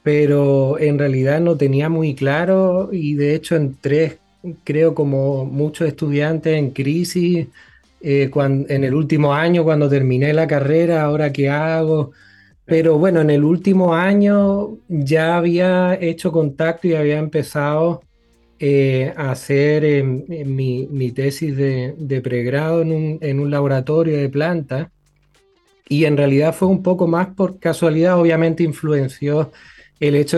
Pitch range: 140-165 Hz